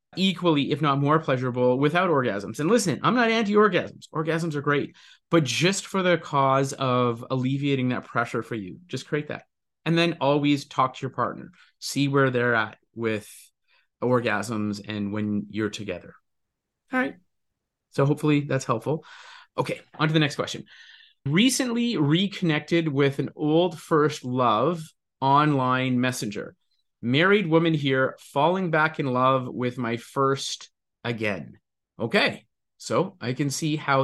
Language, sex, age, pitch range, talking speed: English, male, 30-49, 125-165 Hz, 150 wpm